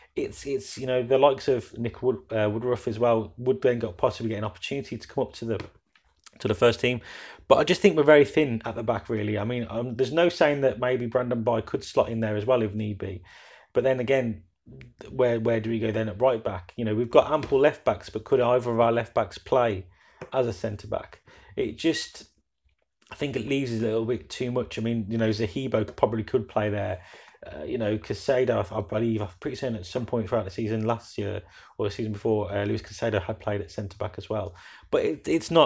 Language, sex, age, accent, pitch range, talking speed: English, male, 30-49, British, 105-125 Hz, 240 wpm